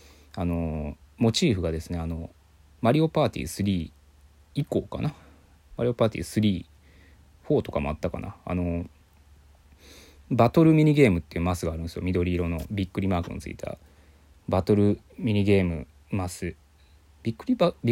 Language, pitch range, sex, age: Japanese, 75-100 Hz, male, 20-39